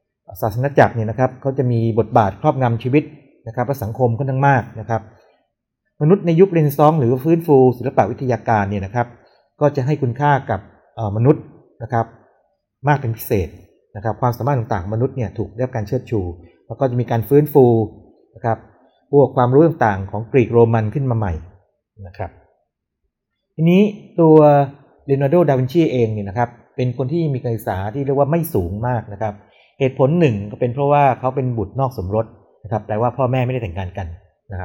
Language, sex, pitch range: Thai, male, 110-140 Hz